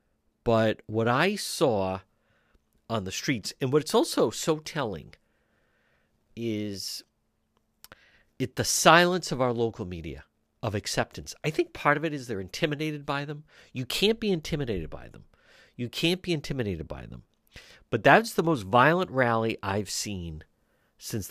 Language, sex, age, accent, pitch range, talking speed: English, male, 50-69, American, 95-150 Hz, 150 wpm